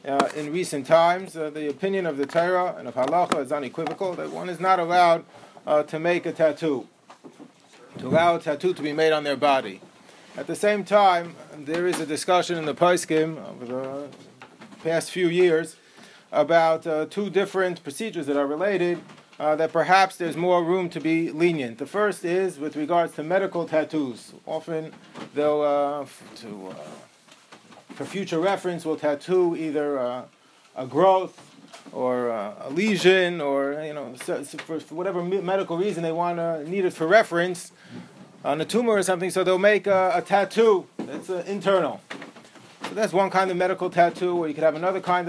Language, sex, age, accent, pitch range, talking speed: English, male, 40-59, American, 155-185 Hz, 180 wpm